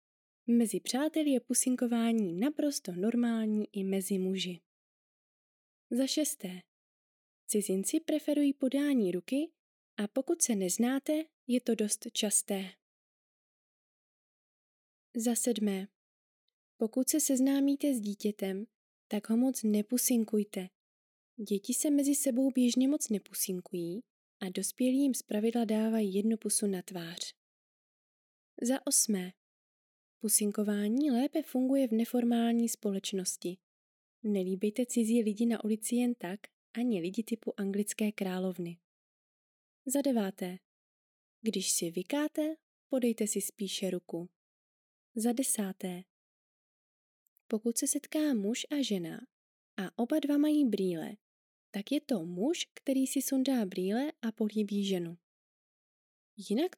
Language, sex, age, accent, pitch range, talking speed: Czech, female, 20-39, native, 195-265 Hz, 110 wpm